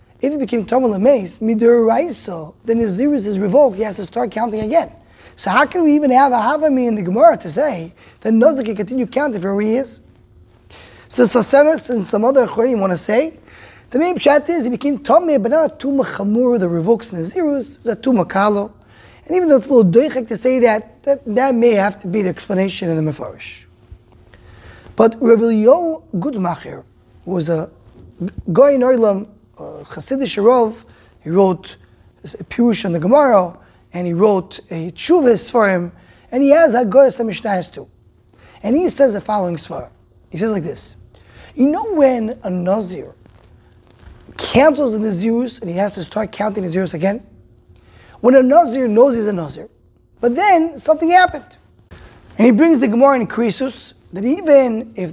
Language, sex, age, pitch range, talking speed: English, male, 20-39, 185-265 Hz, 180 wpm